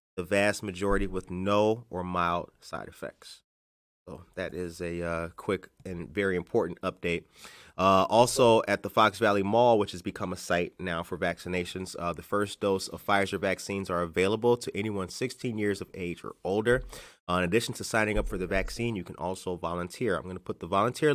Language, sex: English, male